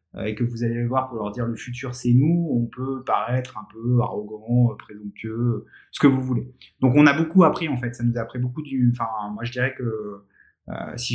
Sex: male